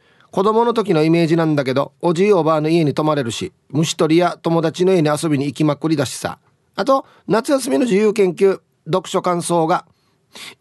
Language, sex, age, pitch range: Japanese, male, 30-49, 130-190 Hz